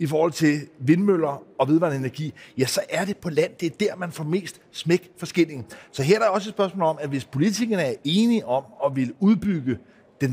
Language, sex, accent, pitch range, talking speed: Danish, male, native, 135-185 Hz, 225 wpm